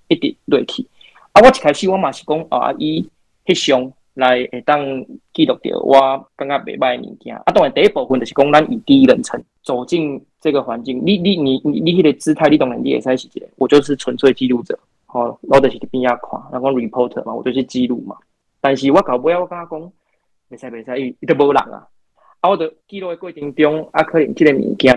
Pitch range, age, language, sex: 125-150 Hz, 20-39, Chinese, male